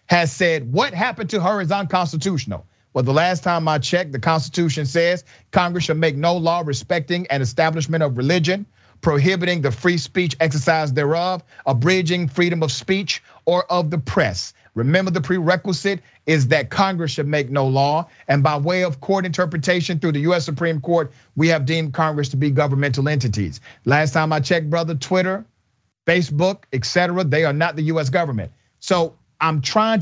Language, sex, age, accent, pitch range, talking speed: English, male, 40-59, American, 140-180 Hz, 175 wpm